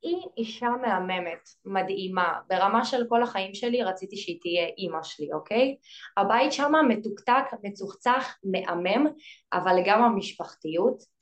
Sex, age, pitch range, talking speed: female, 20-39, 185-255 Hz, 125 wpm